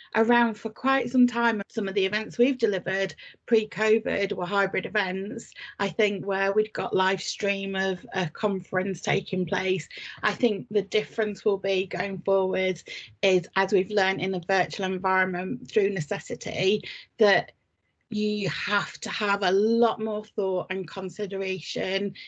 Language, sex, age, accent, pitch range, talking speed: English, female, 30-49, British, 190-220 Hz, 150 wpm